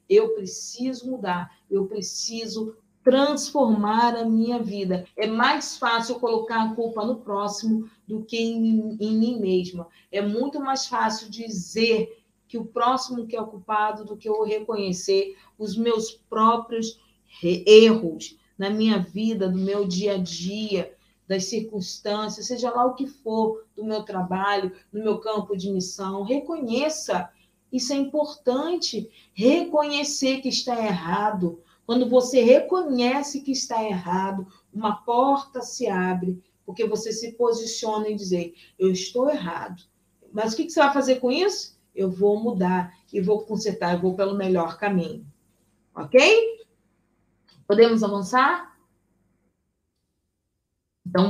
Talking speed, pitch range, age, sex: 140 wpm, 190-240 Hz, 40-59, female